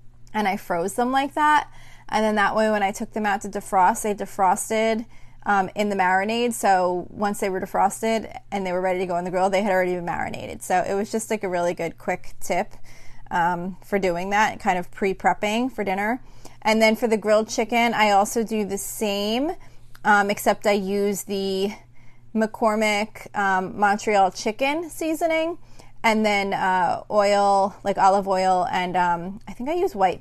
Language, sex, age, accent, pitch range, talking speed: English, female, 20-39, American, 185-220 Hz, 190 wpm